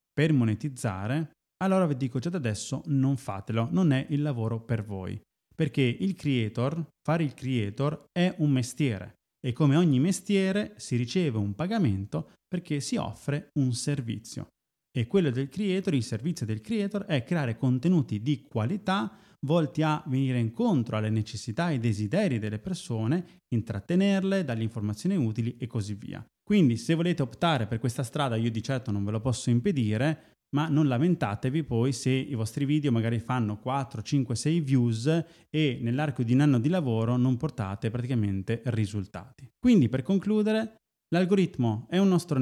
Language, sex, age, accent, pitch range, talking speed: Italian, male, 20-39, native, 115-165 Hz, 165 wpm